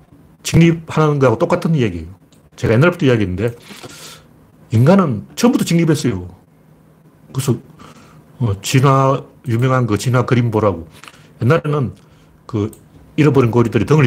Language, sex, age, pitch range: Korean, male, 40-59, 115-170 Hz